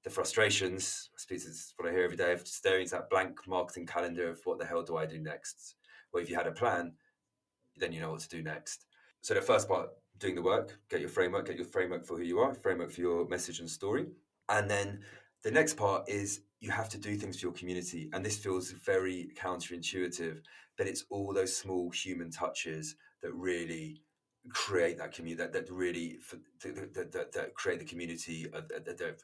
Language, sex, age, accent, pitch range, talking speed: English, male, 30-49, British, 85-110 Hz, 210 wpm